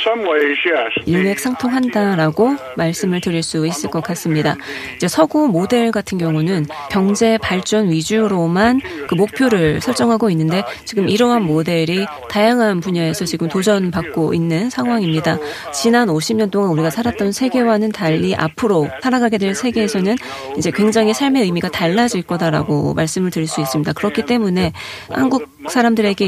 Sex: female